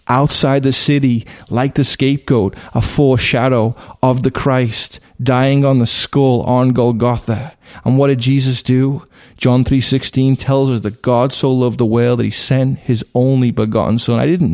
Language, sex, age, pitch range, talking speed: English, male, 30-49, 115-135 Hz, 170 wpm